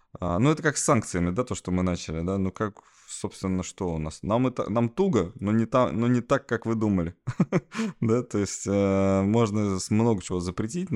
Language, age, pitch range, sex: Russian, 20-39, 90-115 Hz, male